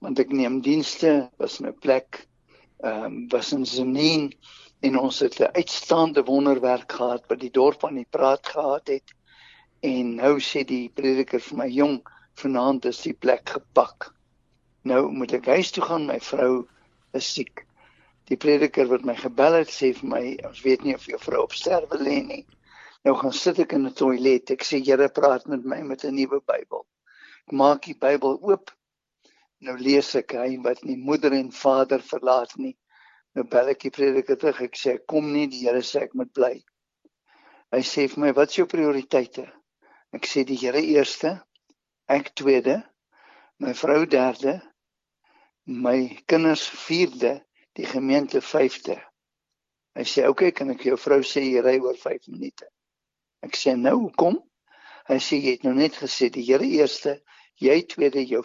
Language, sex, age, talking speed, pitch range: English, male, 60-79, 175 wpm, 130-160 Hz